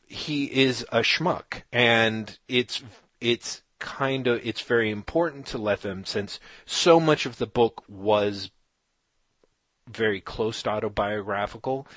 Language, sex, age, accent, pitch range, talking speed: English, male, 30-49, American, 100-125 Hz, 130 wpm